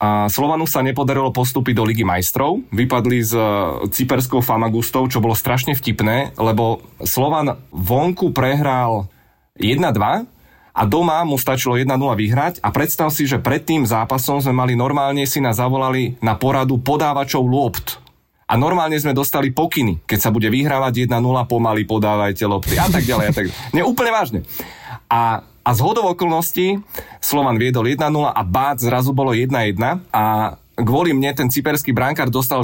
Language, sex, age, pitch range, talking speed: Czech, male, 30-49, 115-145 Hz, 160 wpm